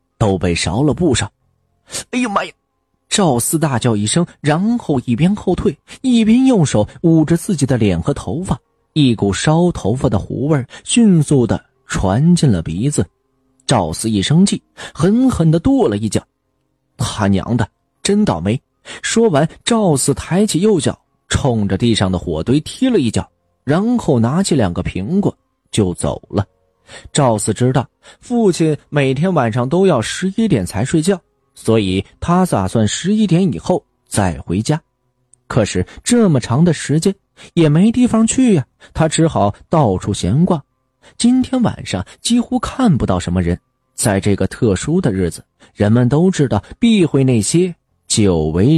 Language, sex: Chinese, male